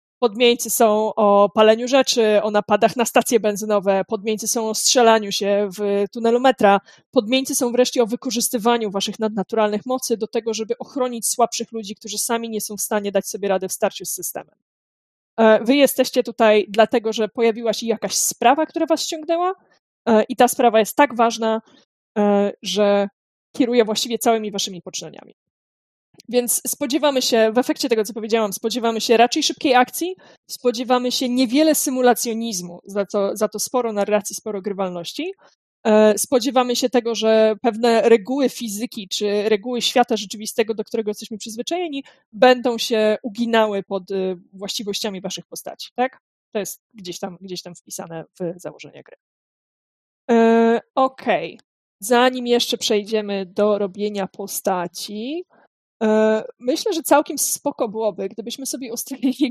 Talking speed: 140 wpm